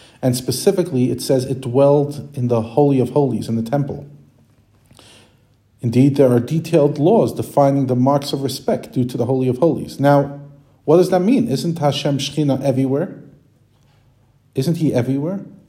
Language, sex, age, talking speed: English, male, 40-59, 160 wpm